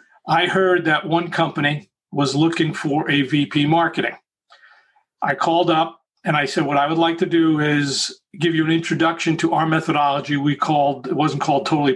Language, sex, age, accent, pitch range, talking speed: English, male, 50-69, American, 145-175 Hz, 185 wpm